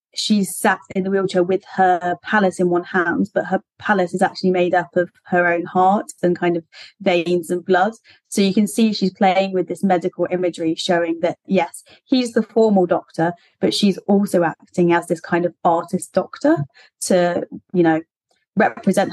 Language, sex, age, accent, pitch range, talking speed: English, female, 20-39, British, 170-190 Hz, 185 wpm